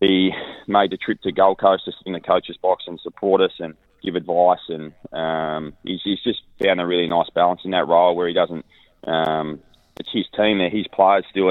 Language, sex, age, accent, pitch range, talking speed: English, male, 20-39, Australian, 85-95 Hz, 215 wpm